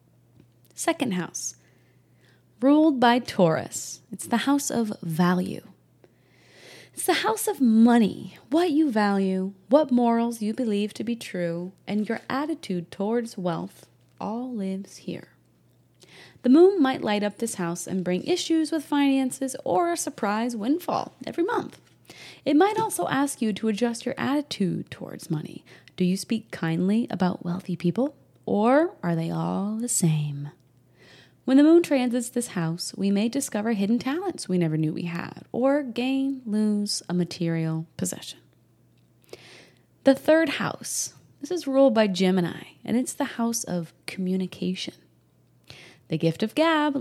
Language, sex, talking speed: English, female, 145 wpm